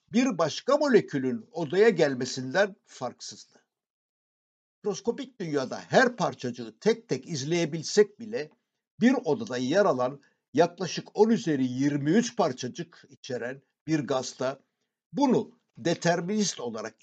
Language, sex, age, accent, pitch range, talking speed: Turkish, male, 60-79, native, 140-215 Hz, 100 wpm